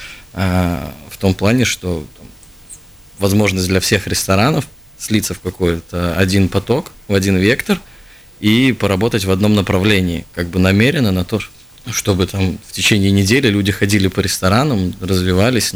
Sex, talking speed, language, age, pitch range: male, 135 wpm, Russian, 20-39, 95-110 Hz